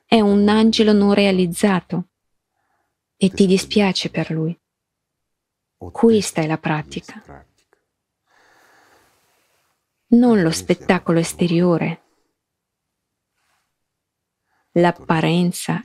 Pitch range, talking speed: 175-205 Hz, 70 wpm